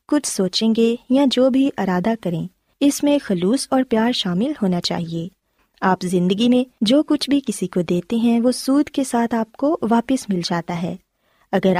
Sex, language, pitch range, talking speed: female, Urdu, 190-265 Hz, 190 wpm